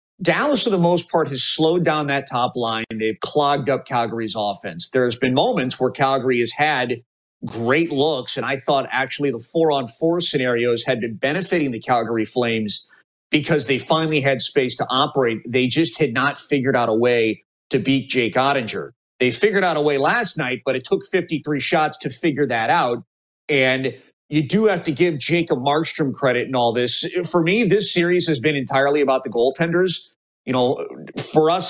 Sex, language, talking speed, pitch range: male, English, 195 wpm, 125-155 Hz